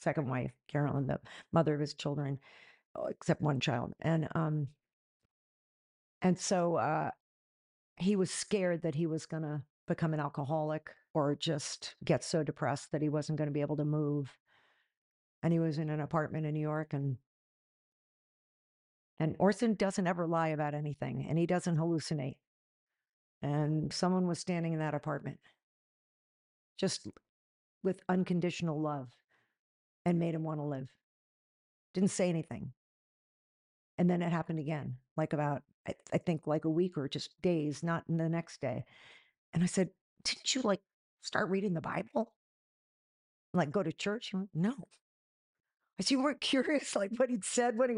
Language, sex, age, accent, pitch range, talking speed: English, female, 50-69, American, 150-185 Hz, 160 wpm